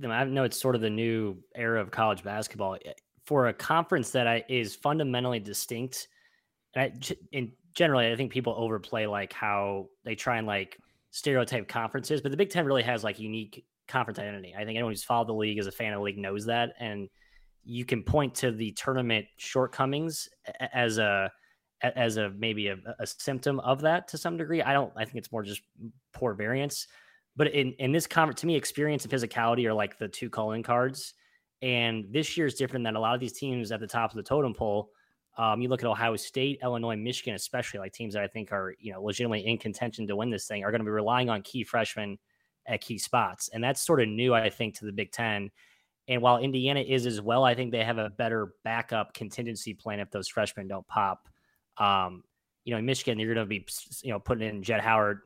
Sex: male